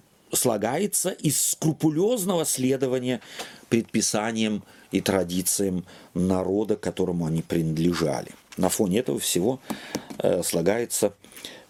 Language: Russian